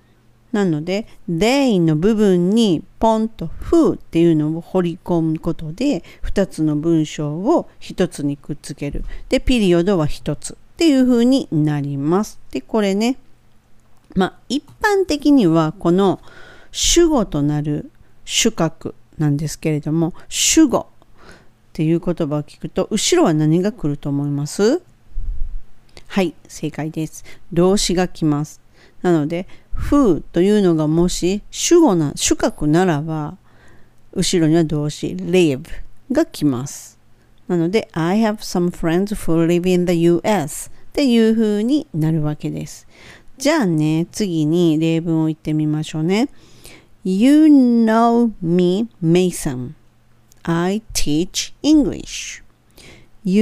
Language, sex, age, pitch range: Japanese, female, 40-59, 155-210 Hz